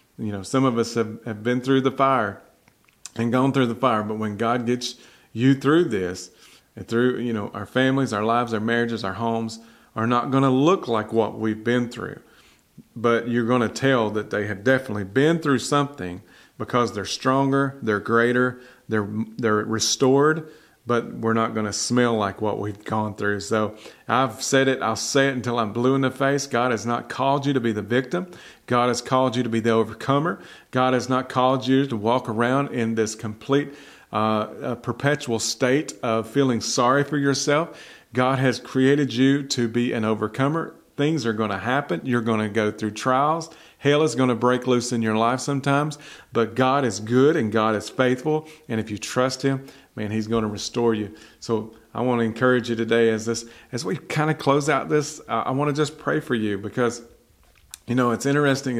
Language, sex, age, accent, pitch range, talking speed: English, male, 40-59, American, 110-135 Hz, 200 wpm